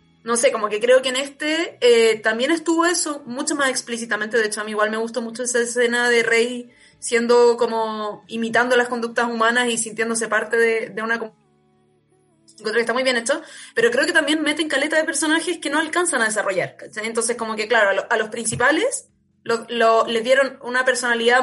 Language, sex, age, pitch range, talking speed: Spanish, female, 20-39, 235-285 Hz, 200 wpm